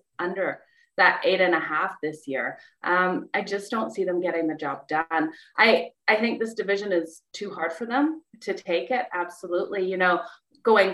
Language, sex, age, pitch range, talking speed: English, female, 30-49, 175-235 Hz, 190 wpm